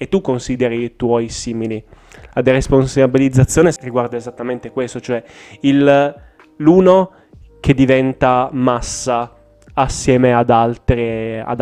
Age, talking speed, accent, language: 10-29, 110 wpm, native, Italian